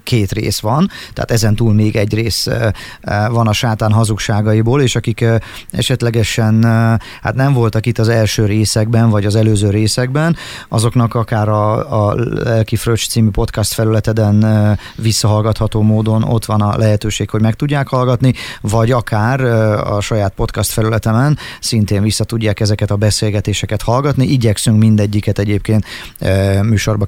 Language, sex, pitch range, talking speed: Hungarian, male, 105-120 Hz, 135 wpm